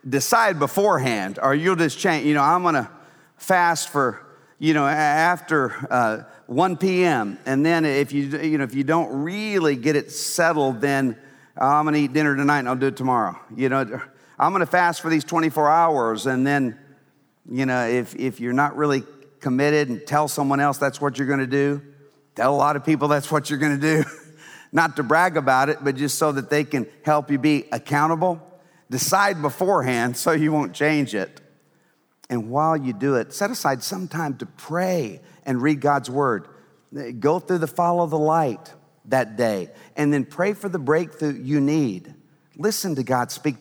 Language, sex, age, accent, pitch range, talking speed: English, male, 50-69, American, 135-160 Hz, 190 wpm